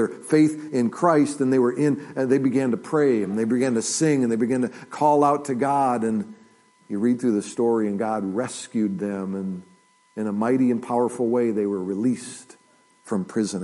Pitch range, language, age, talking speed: 110-150 Hz, English, 50-69, 205 wpm